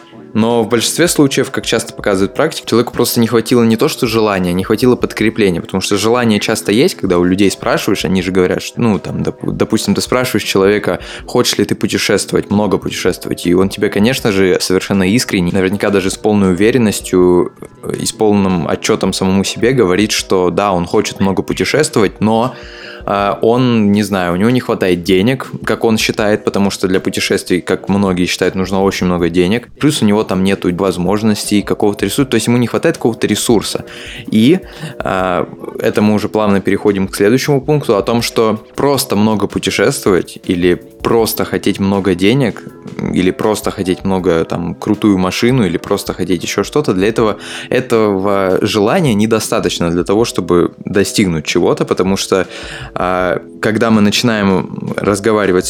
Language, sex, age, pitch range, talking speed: Russian, male, 20-39, 95-110 Hz, 165 wpm